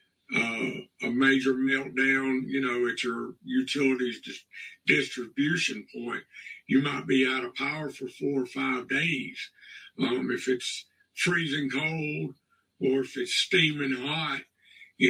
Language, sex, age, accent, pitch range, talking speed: English, male, 50-69, American, 125-140 Hz, 130 wpm